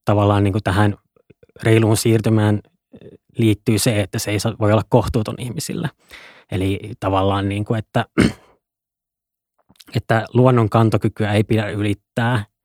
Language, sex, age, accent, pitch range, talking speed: Finnish, male, 20-39, native, 105-120 Hz, 125 wpm